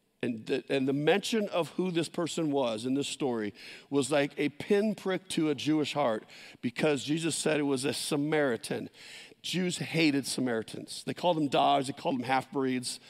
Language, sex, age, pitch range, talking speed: English, male, 50-69, 135-165 Hz, 175 wpm